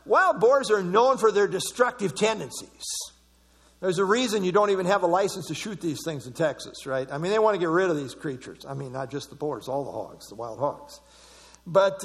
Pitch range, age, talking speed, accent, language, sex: 150-225 Hz, 50-69, 235 wpm, American, English, male